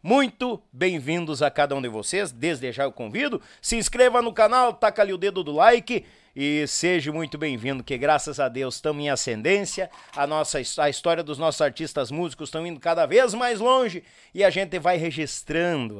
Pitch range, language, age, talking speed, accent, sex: 150-210 Hz, Portuguese, 50-69, 190 wpm, Brazilian, male